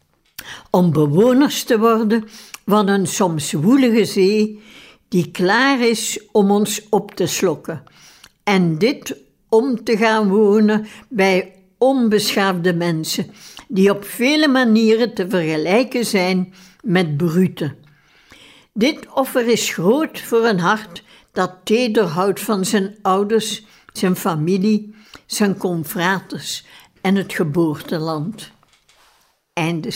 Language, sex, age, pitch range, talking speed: Dutch, female, 60-79, 185-230 Hz, 110 wpm